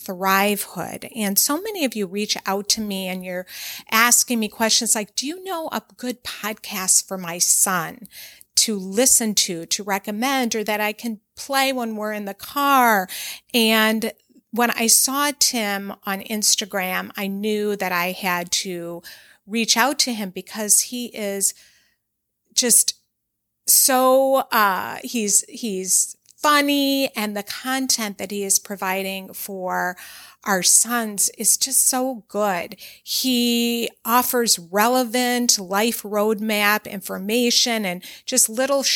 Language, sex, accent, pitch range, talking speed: English, female, American, 195-240 Hz, 135 wpm